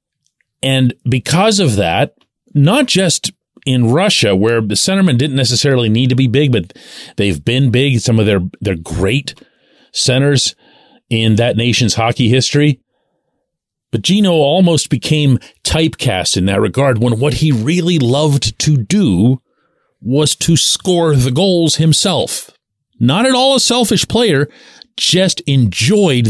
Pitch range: 110-160 Hz